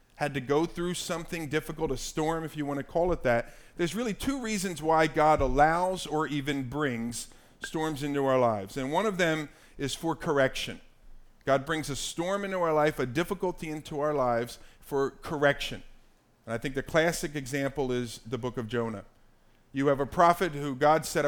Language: English